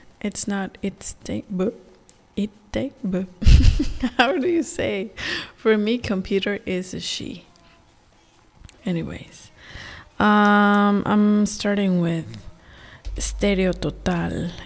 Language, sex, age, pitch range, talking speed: English, female, 20-39, 175-220 Hz, 95 wpm